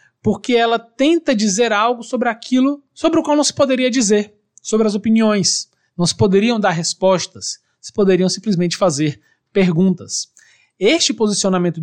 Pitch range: 165-240 Hz